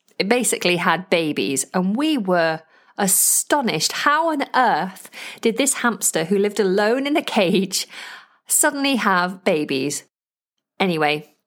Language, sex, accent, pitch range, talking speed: English, female, British, 185-260 Hz, 125 wpm